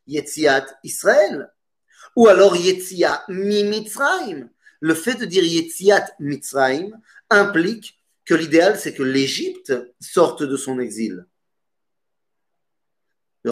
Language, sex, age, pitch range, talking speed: French, male, 30-49, 160-260 Hz, 95 wpm